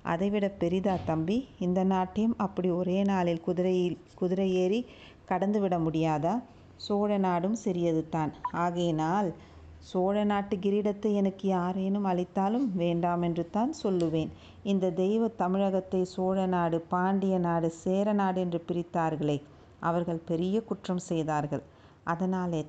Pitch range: 170-200 Hz